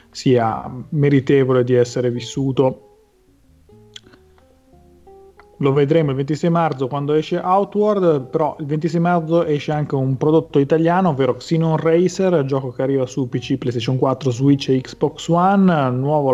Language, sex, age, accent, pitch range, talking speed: Italian, male, 30-49, native, 120-155 Hz, 135 wpm